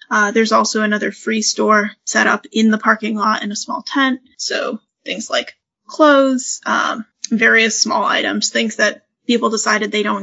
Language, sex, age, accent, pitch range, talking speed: English, female, 10-29, American, 215-275 Hz, 175 wpm